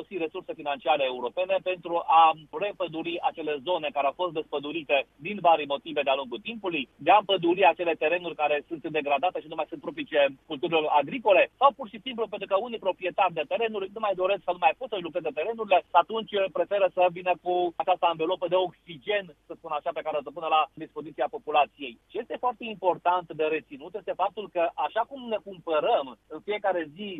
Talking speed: 195 wpm